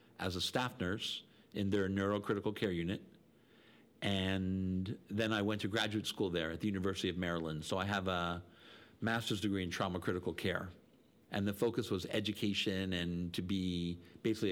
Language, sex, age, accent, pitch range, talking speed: English, male, 50-69, American, 95-110 Hz, 170 wpm